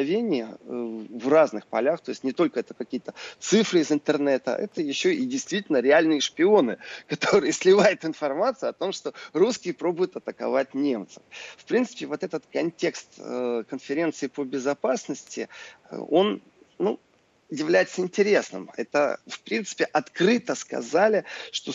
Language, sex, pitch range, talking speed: Russian, male, 125-185 Hz, 125 wpm